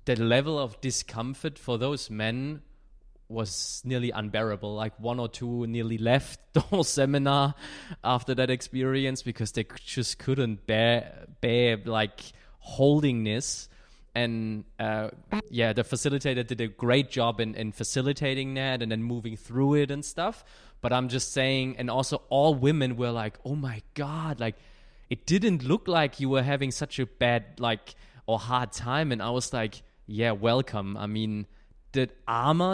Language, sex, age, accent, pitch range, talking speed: English, male, 20-39, German, 115-135 Hz, 165 wpm